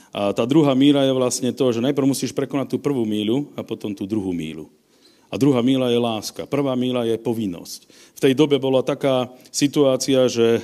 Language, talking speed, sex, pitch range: Slovak, 195 wpm, male, 120-145 Hz